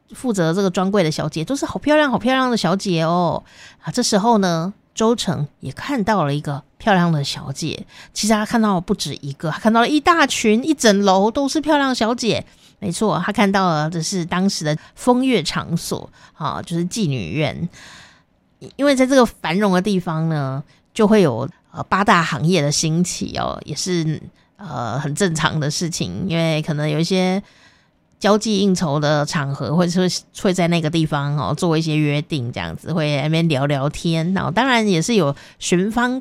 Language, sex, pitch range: Chinese, female, 165-230 Hz